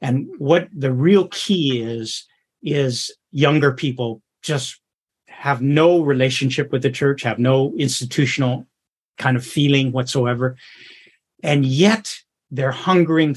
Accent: American